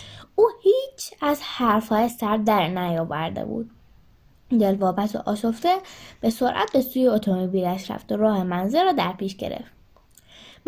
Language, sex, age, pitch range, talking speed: Persian, female, 10-29, 190-300 Hz, 140 wpm